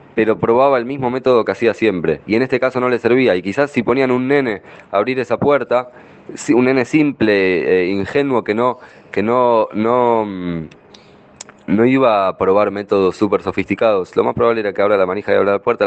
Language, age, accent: English, 20-39, Argentinian